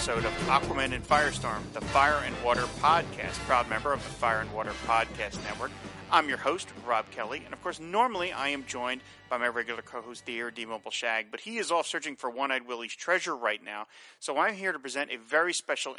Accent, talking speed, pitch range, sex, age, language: American, 215 wpm, 120-155 Hz, male, 40-59, English